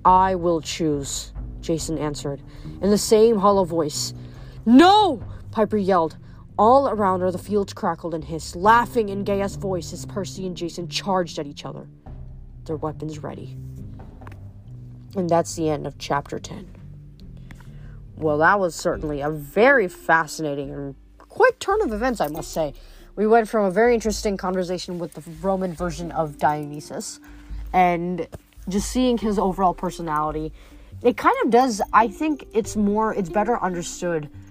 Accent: American